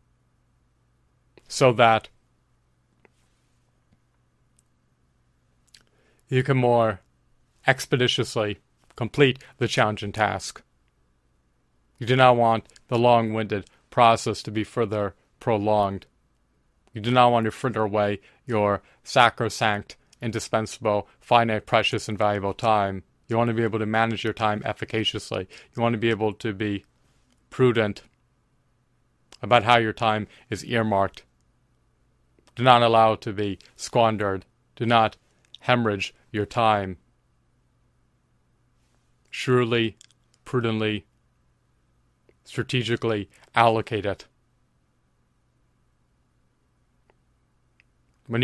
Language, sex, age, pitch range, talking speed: English, male, 30-49, 100-120 Hz, 95 wpm